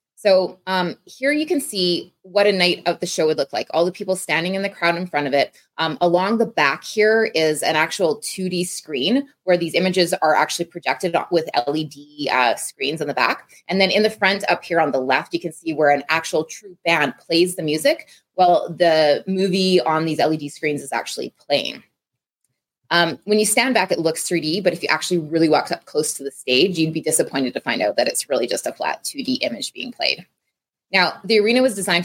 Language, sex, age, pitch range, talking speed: English, female, 20-39, 150-185 Hz, 225 wpm